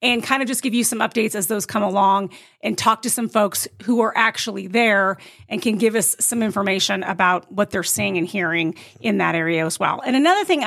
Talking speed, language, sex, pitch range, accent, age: 230 wpm, English, female, 200-240 Hz, American, 30-49